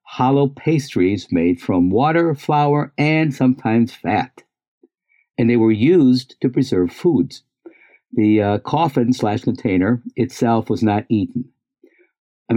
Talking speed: 125 wpm